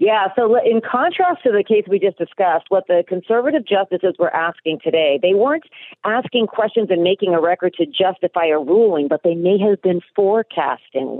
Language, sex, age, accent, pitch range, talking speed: English, female, 40-59, American, 175-255 Hz, 190 wpm